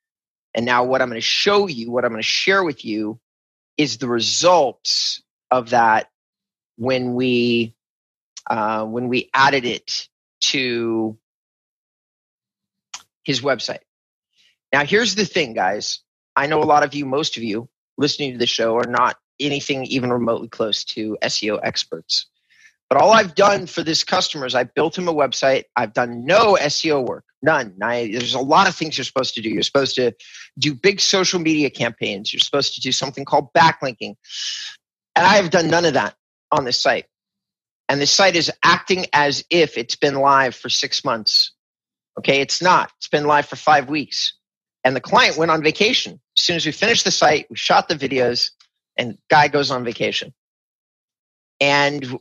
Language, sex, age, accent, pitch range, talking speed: English, male, 30-49, American, 125-165 Hz, 180 wpm